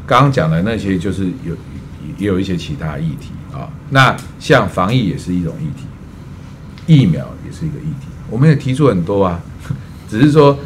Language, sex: Chinese, male